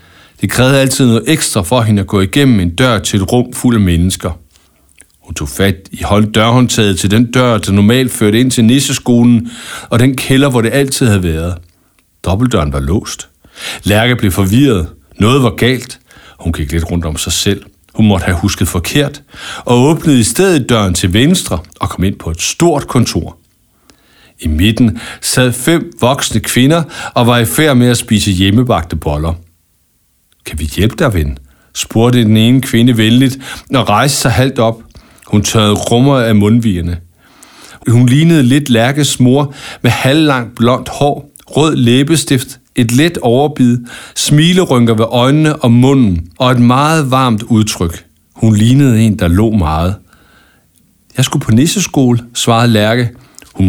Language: English